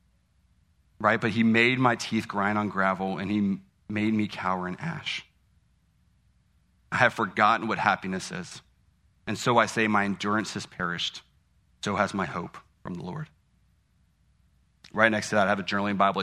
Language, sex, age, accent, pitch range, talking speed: English, male, 30-49, American, 95-115 Hz, 170 wpm